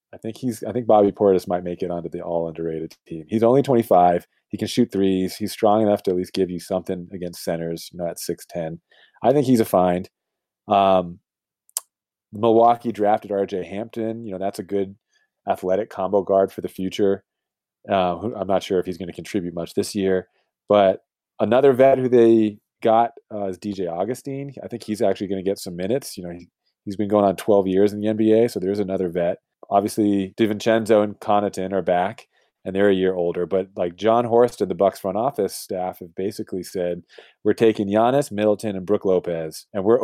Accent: American